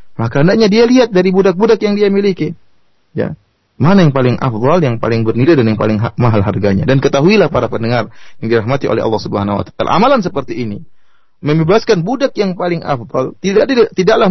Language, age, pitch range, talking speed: Indonesian, 30-49, 140-200 Hz, 175 wpm